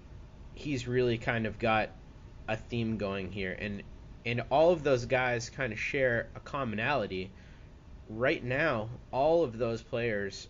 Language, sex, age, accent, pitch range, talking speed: English, male, 30-49, American, 100-130 Hz, 150 wpm